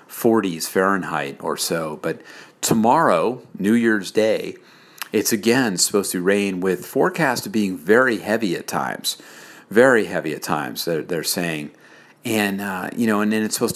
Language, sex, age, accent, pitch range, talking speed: English, male, 50-69, American, 90-110 Hz, 155 wpm